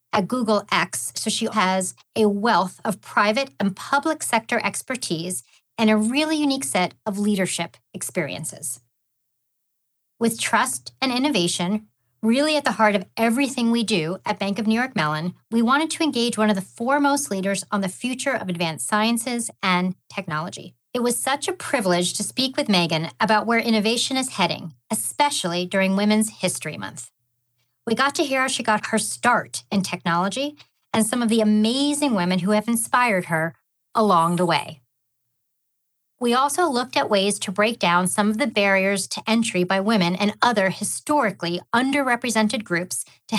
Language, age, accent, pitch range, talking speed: English, 40-59, American, 180-240 Hz, 170 wpm